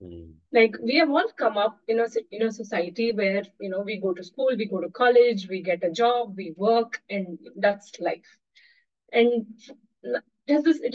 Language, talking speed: English, 180 wpm